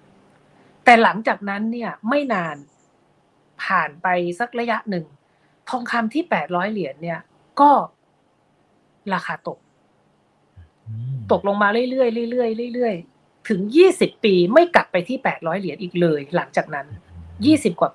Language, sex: Thai, female